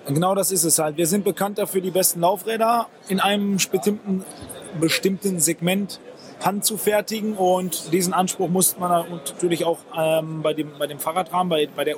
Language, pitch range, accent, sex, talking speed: German, 170-200 Hz, German, male, 175 wpm